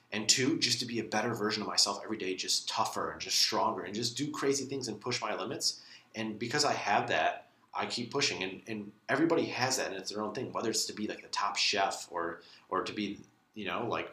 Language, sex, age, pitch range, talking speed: English, male, 30-49, 100-125 Hz, 250 wpm